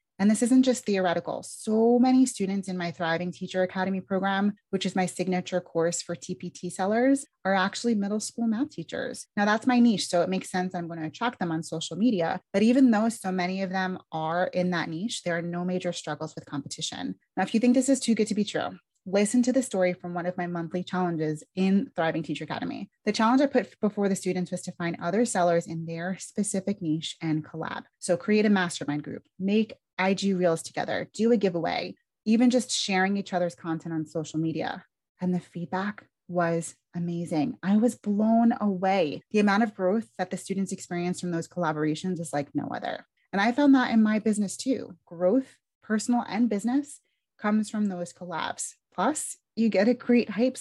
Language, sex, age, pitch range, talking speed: English, female, 20-39, 175-225 Hz, 205 wpm